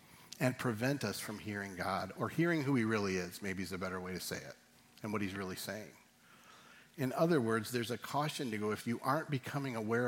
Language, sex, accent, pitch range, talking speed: English, male, American, 100-130 Hz, 225 wpm